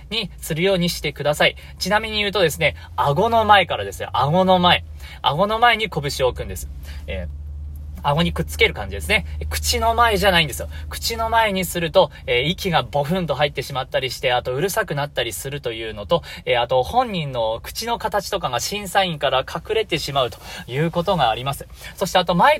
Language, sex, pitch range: Japanese, male, 125-195 Hz